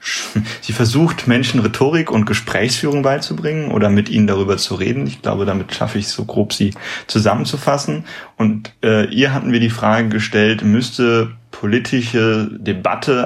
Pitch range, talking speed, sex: 105-135 Hz, 155 wpm, male